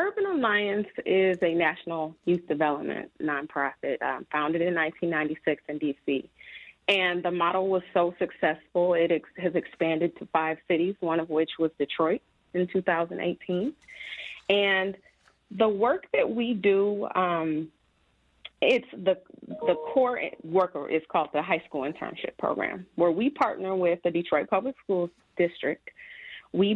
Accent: American